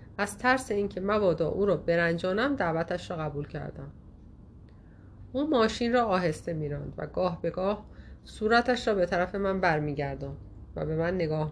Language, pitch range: Persian, 155-215 Hz